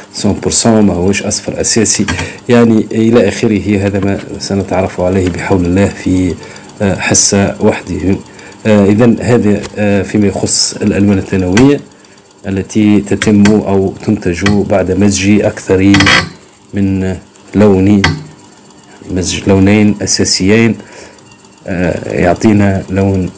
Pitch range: 95-110 Hz